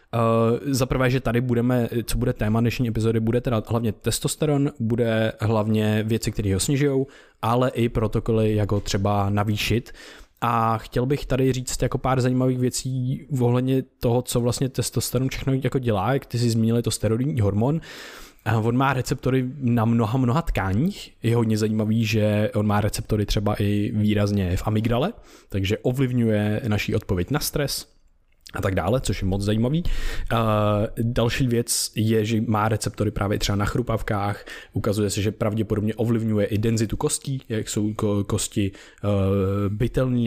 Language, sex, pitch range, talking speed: Czech, male, 110-130 Hz, 155 wpm